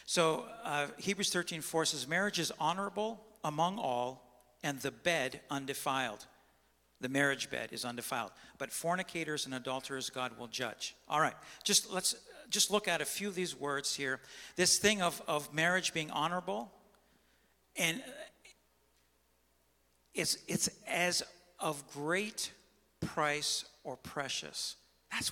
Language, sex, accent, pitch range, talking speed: English, male, American, 125-180 Hz, 135 wpm